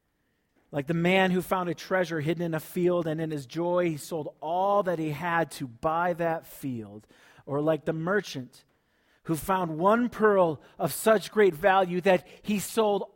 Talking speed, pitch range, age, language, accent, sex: 185 wpm, 140-180 Hz, 40-59, English, American, male